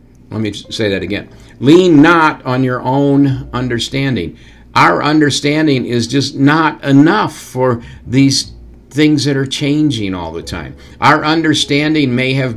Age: 50-69